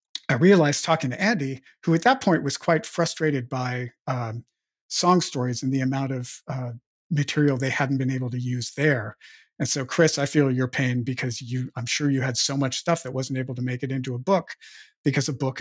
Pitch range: 130-155 Hz